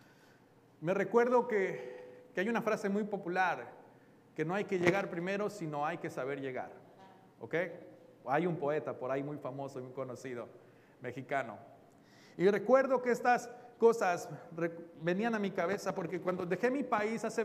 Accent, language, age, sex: Mexican, Spanish, 40-59, male